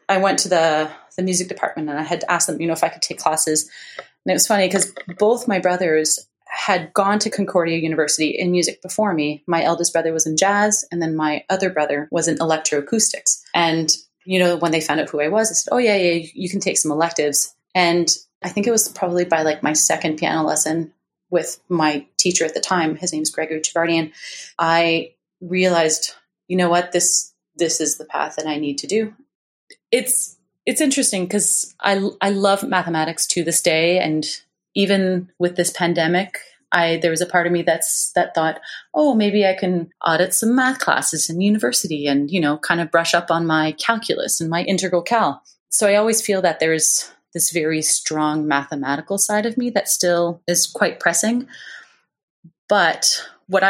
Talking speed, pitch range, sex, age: 200 wpm, 160-190 Hz, female, 30-49